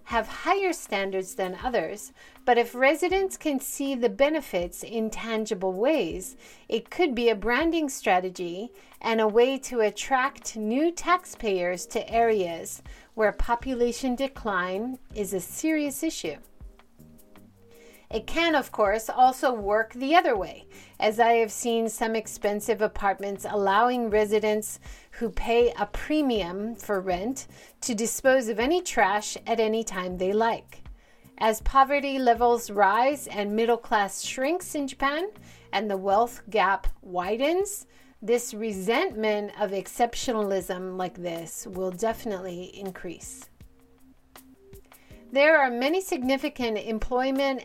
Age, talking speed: 40-59, 125 wpm